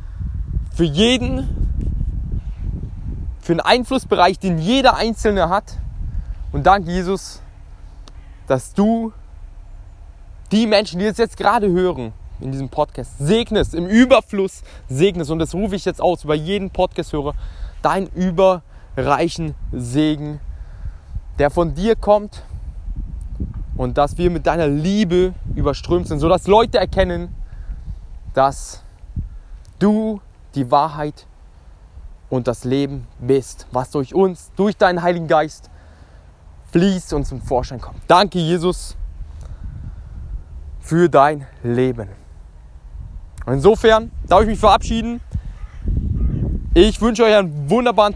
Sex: male